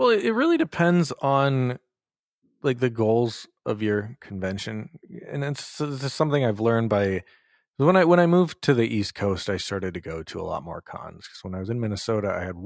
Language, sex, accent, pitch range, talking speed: English, male, American, 100-135 Hz, 215 wpm